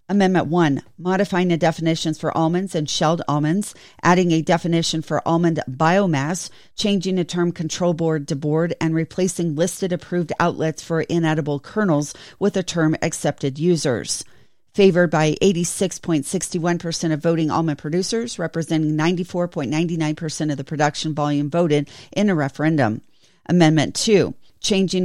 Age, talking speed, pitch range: 40-59, 140 wpm, 155-175 Hz